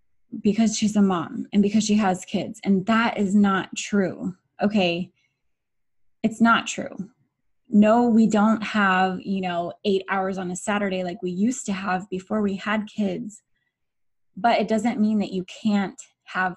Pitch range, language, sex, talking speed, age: 180-210 Hz, English, female, 165 wpm, 20-39